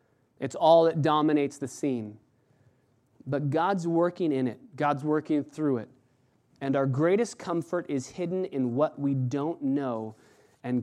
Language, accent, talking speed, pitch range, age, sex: English, American, 150 wpm, 125-150 Hz, 30-49, male